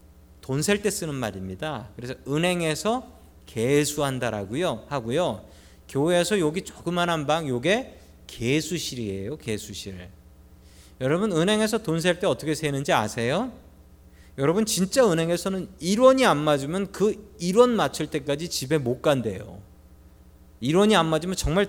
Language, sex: Korean, male